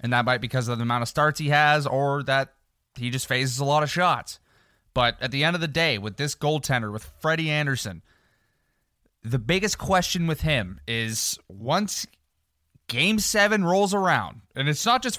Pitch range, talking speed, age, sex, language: 110-150 Hz, 195 wpm, 20-39, male, English